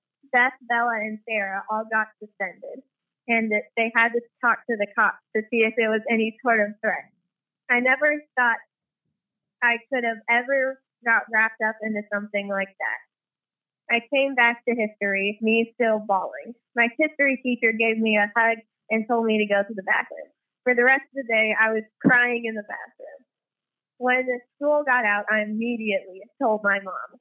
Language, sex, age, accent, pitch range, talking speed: English, female, 20-39, American, 210-245 Hz, 185 wpm